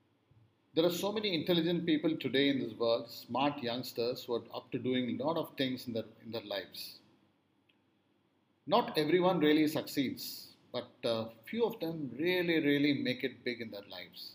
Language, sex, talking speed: English, male, 175 wpm